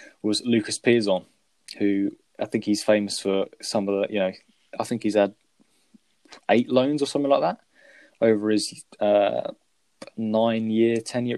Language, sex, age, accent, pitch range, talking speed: English, male, 20-39, British, 100-120 Hz, 155 wpm